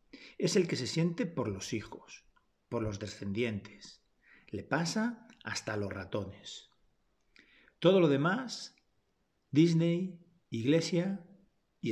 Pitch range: 110-165 Hz